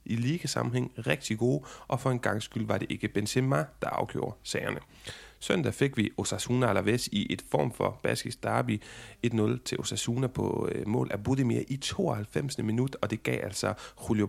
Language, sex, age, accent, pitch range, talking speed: Danish, male, 30-49, native, 105-135 Hz, 175 wpm